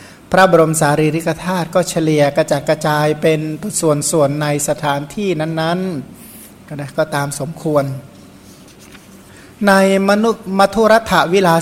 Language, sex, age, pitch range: Thai, male, 60-79, 150-180 Hz